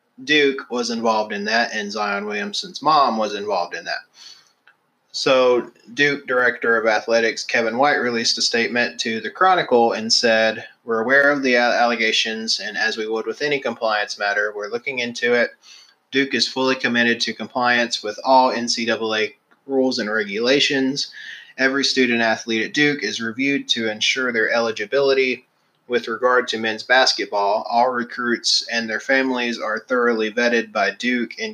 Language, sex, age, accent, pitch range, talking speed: English, male, 20-39, American, 110-130 Hz, 160 wpm